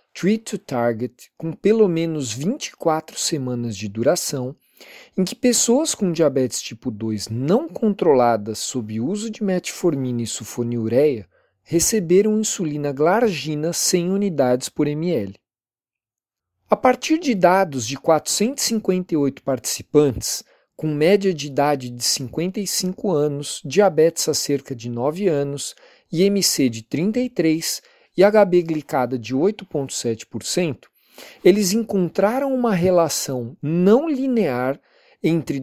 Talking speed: 110 wpm